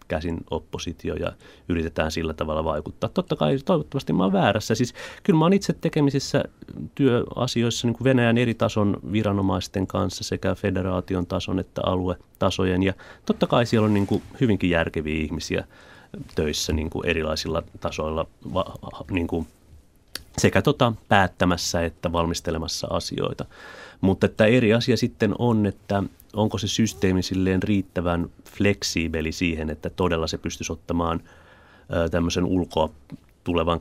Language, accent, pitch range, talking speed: Finnish, native, 85-105 Hz, 130 wpm